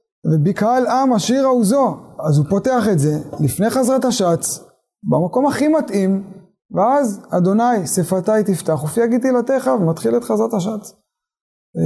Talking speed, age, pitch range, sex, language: 135 wpm, 20-39, 165-220 Hz, male, Hebrew